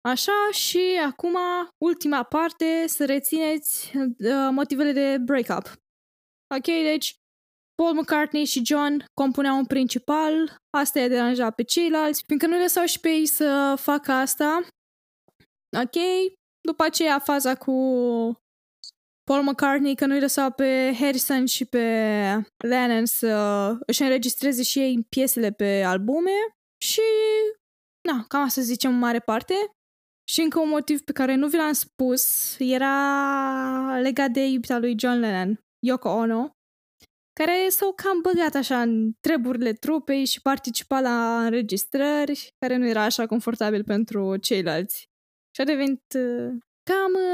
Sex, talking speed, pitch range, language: female, 135 wpm, 245-310 Hz, Romanian